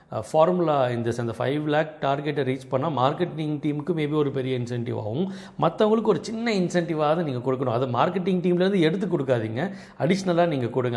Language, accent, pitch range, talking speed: Tamil, native, 125-170 Hz, 150 wpm